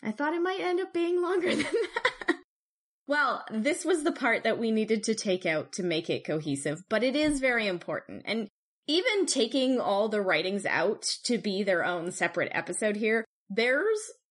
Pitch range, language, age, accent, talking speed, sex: 195-275 Hz, English, 20-39, American, 190 wpm, female